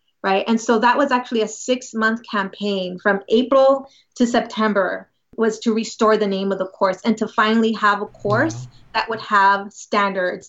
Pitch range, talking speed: 205-250 Hz, 185 wpm